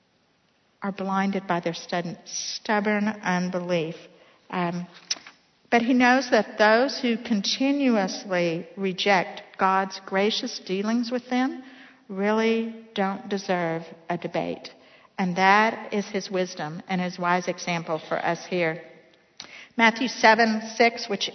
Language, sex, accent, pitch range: English, female, American, 185-225 Hz